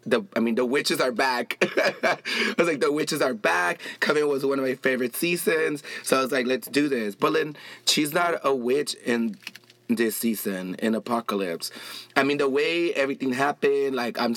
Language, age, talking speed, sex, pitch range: English, 20-39, 195 wpm, male, 110-130 Hz